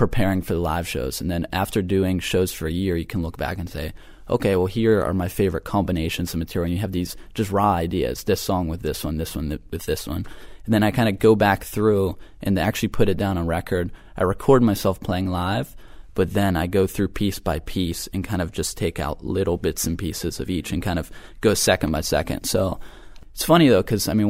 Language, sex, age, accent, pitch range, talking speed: English, male, 20-39, American, 85-100 Hz, 245 wpm